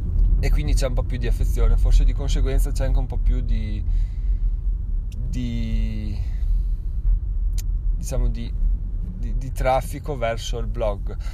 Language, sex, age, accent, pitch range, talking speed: Italian, male, 20-39, native, 85-130 Hz, 140 wpm